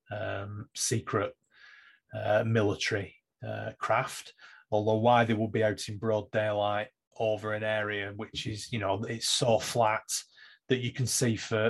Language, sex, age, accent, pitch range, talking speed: English, male, 30-49, British, 105-120 Hz, 155 wpm